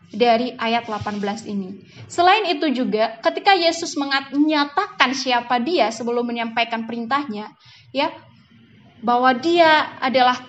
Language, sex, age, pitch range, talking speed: Indonesian, female, 20-39, 235-310 Hz, 110 wpm